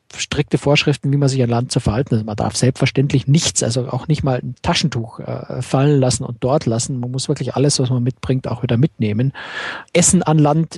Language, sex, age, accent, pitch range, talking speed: German, male, 50-69, German, 130-155 Hz, 225 wpm